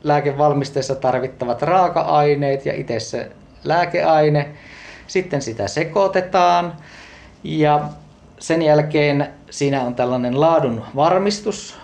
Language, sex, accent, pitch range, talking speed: Finnish, male, native, 125-160 Hz, 90 wpm